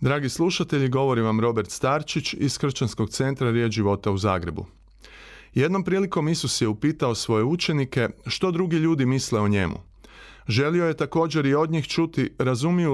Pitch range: 115-160 Hz